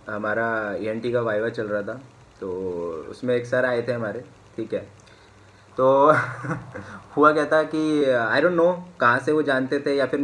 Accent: native